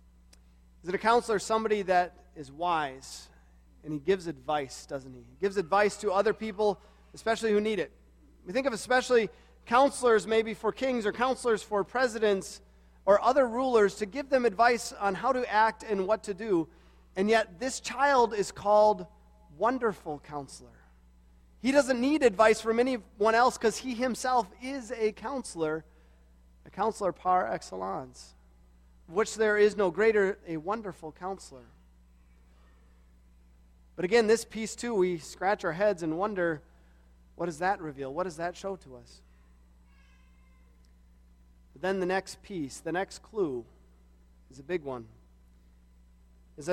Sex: male